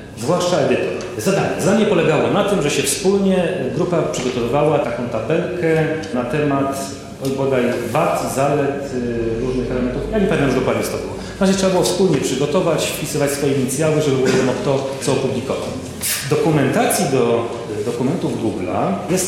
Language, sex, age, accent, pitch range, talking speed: Polish, male, 40-59, native, 125-160 Hz, 150 wpm